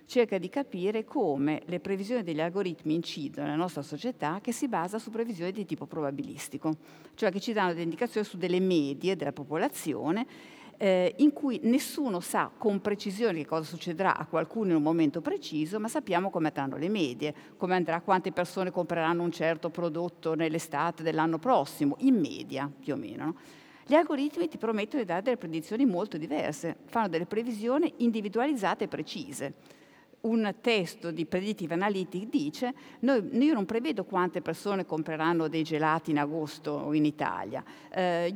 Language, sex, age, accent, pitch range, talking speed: Italian, female, 50-69, native, 165-240 Hz, 165 wpm